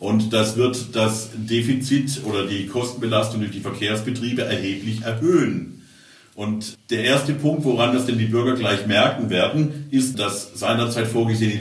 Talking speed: 150 wpm